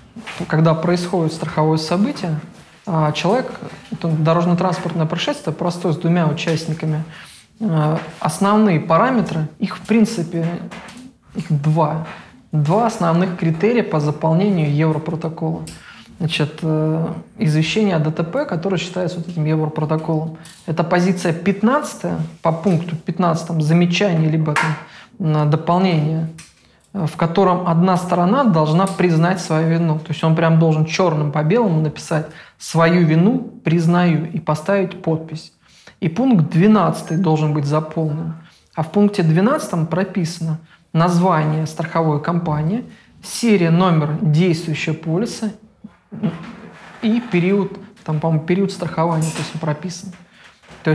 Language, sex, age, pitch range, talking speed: English, male, 20-39, 160-185 Hz, 110 wpm